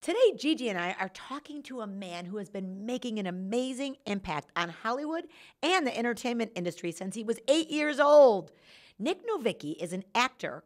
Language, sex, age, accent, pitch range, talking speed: English, female, 50-69, American, 200-290 Hz, 185 wpm